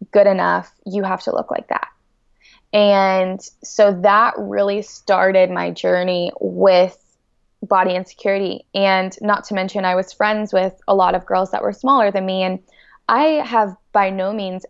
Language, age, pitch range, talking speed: English, 20-39, 185-205 Hz, 165 wpm